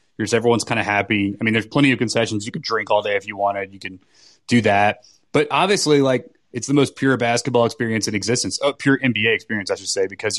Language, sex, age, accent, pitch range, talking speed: English, male, 30-49, American, 105-120 Hz, 235 wpm